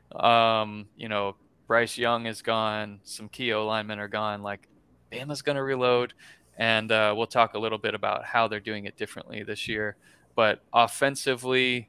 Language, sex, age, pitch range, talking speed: English, male, 20-39, 105-125 Hz, 165 wpm